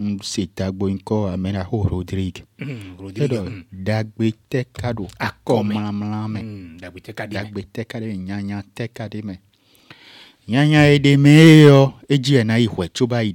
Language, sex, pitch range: French, male, 105-125 Hz